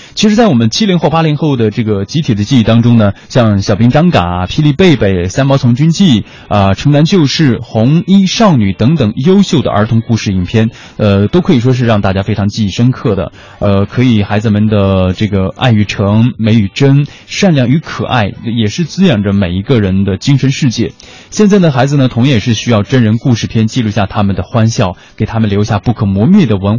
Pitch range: 105-140 Hz